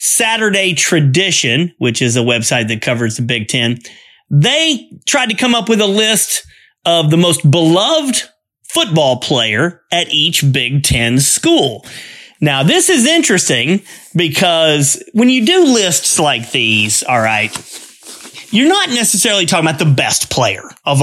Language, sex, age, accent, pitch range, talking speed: English, male, 30-49, American, 120-190 Hz, 150 wpm